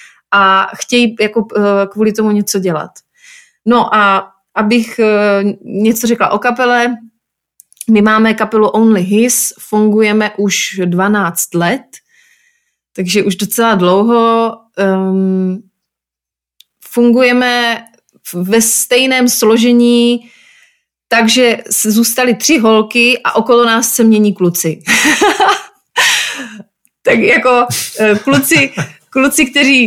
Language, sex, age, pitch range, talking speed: Slovak, female, 20-39, 195-240 Hz, 100 wpm